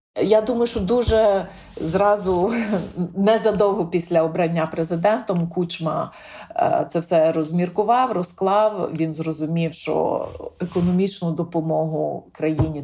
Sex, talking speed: female, 90 wpm